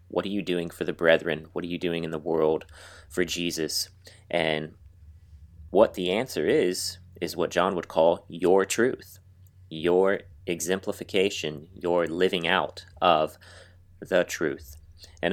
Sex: male